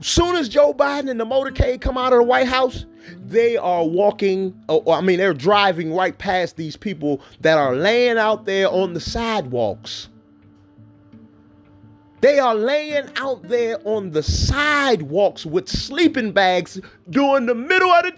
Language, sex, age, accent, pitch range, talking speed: English, male, 30-49, American, 165-275 Hz, 160 wpm